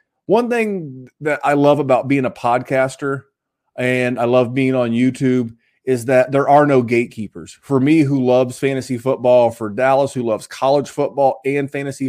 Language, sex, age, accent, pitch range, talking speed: English, male, 30-49, American, 125-170 Hz, 175 wpm